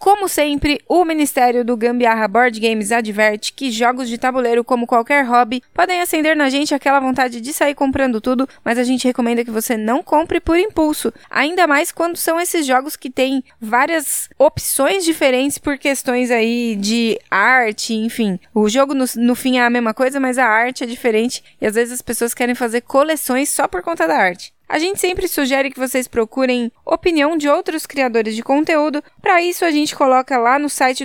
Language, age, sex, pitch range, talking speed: Portuguese, 20-39, female, 240-295 Hz, 195 wpm